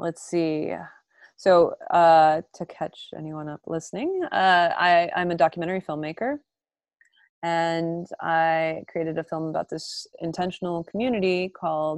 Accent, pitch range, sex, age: American, 160-190 Hz, female, 20-39